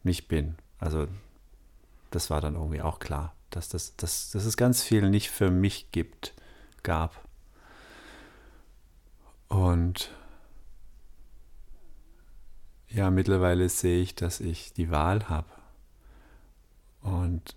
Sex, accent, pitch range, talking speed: male, German, 85-100 Hz, 110 wpm